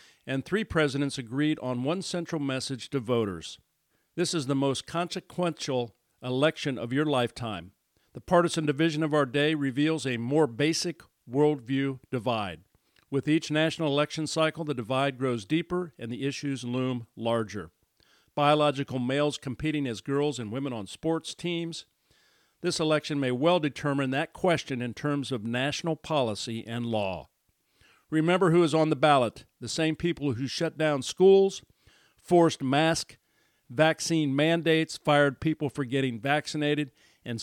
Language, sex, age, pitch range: English, male, 50-69, 120-155 Hz